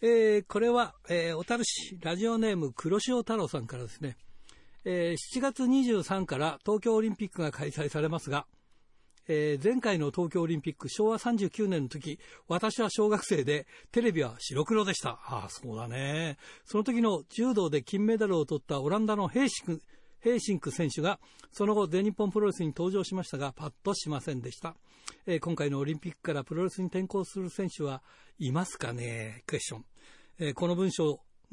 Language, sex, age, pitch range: Japanese, male, 60-79, 150-215 Hz